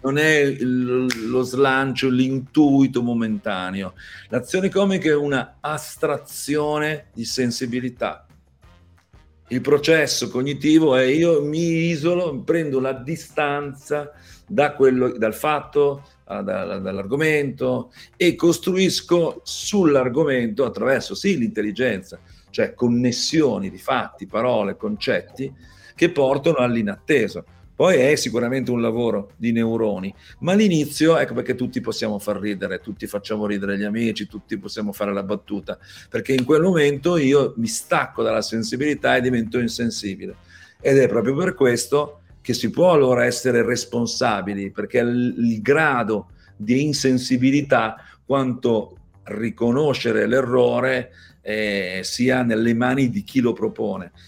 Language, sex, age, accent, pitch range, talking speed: Italian, male, 50-69, native, 110-145 Hz, 120 wpm